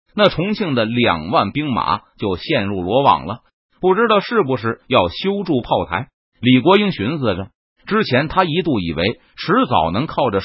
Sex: male